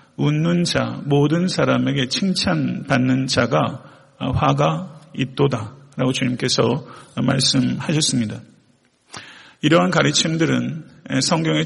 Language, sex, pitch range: Korean, male, 130-150 Hz